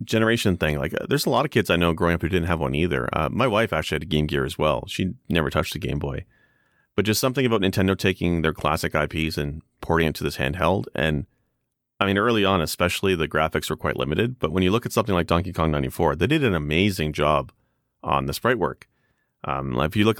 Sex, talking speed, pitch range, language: male, 240 wpm, 75-100 Hz, English